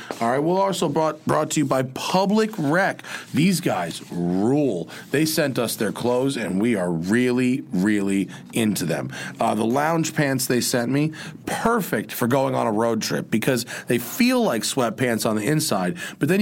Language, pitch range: English, 115-155 Hz